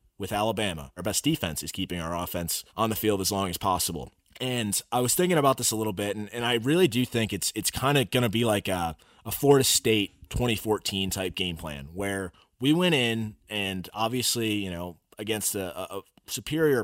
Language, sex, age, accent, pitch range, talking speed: English, male, 30-49, American, 90-110 Hz, 210 wpm